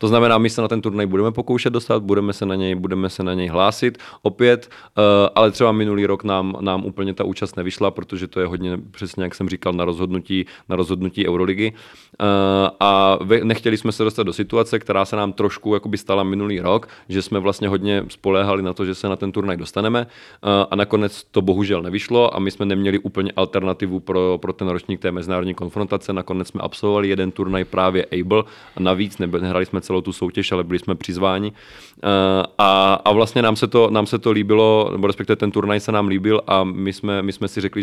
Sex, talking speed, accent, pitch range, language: male, 210 wpm, native, 90-100 Hz, Czech